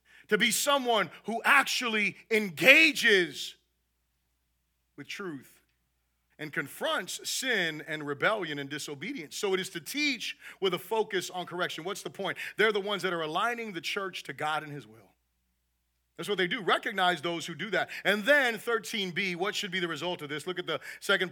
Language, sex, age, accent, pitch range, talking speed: English, male, 40-59, American, 155-220 Hz, 180 wpm